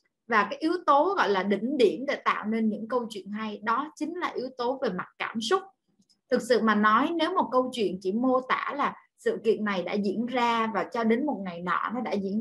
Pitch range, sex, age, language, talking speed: 200-265 Hz, female, 20-39, Vietnamese, 245 wpm